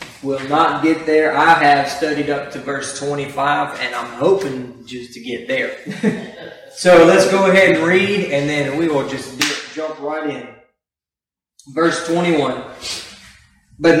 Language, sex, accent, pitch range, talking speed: English, male, American, 155-185 Hz, 150 wpm